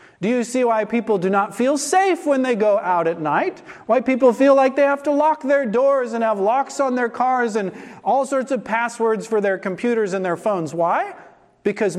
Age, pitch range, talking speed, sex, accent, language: 40-59, 175-245 Hz, 220 wpm, male, American, English